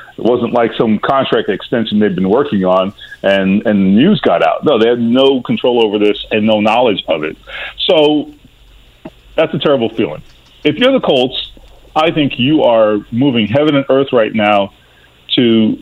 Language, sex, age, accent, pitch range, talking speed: English, male, 40-59, American, 110-155 Hz, 180 wpm